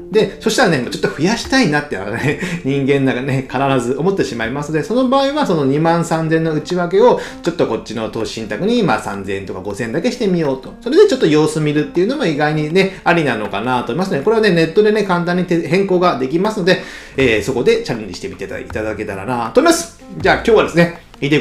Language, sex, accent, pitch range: Japanese, male, native, 135-205 Hz